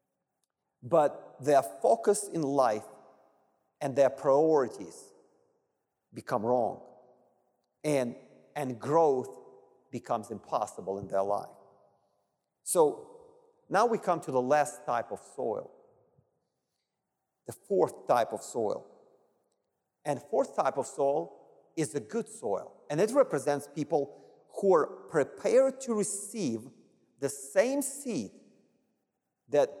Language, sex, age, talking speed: English, male, 50-69, 110 wpm